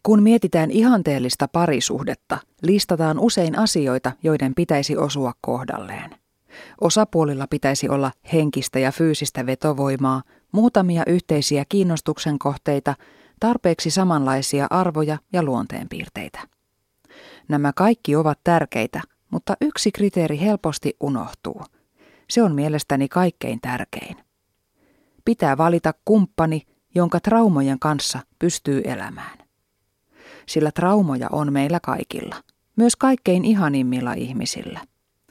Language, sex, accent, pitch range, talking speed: Finnish, female, native, 140-185 Hz, 100 wpm